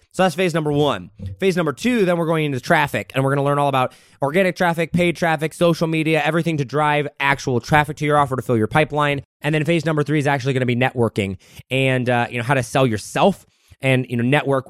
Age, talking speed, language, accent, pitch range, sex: 20-39, 255 wpm, English, American, 125-165 Hz, male